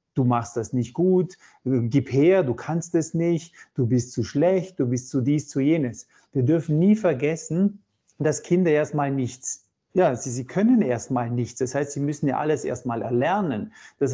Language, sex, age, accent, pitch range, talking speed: German, male, 40-59, German, 125-160 Hz, 185 wpm